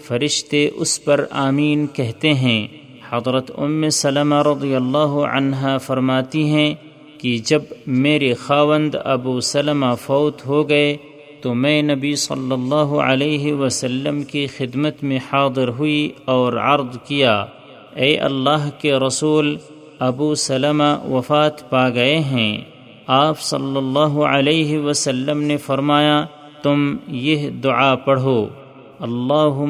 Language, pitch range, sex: Urdu, 130-150 Hz, male